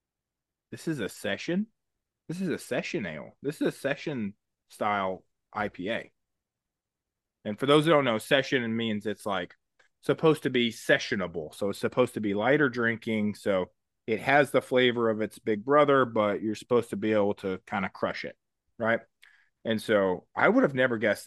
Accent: American